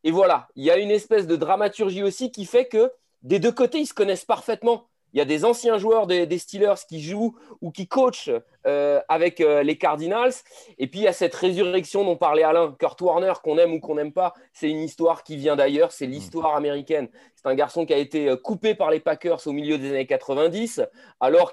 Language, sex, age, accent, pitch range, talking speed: French, male, 30-49, French, 170-230 Hz, 230 wpm